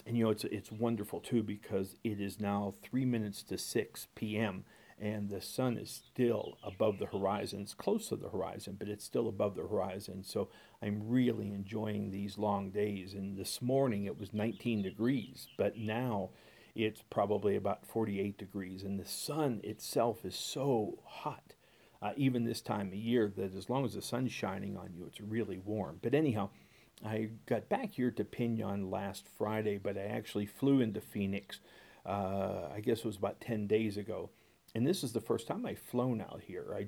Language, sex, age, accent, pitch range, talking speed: English, male, 50-69, American, 100-115 Hz, 190 wpm